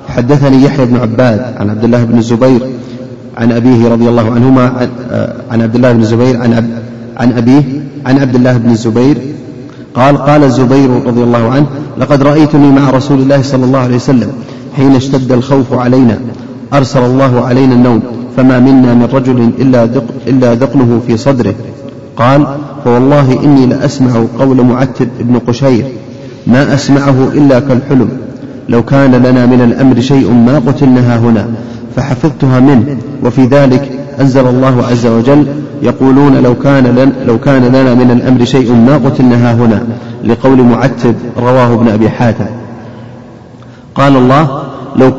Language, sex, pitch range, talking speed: Arabic, male, 120-135 Hz, 140 wpm